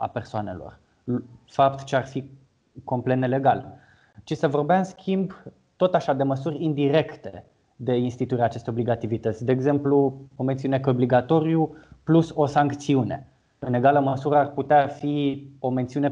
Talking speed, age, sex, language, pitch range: 145 wpm, 20-39, male, Romanian, 120-150 Hz